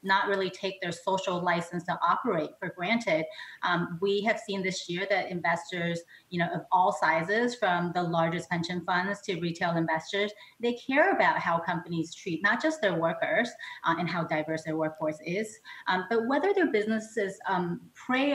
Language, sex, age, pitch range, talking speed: English, female, 30-49, 170-215 Hz, 180 wpm